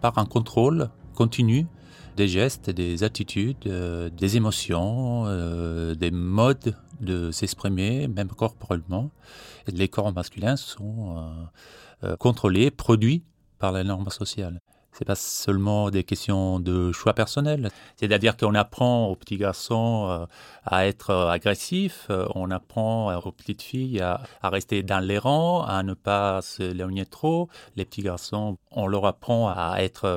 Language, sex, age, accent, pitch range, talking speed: French, male, 30-49, French, 95-120 Hz, 145 wpm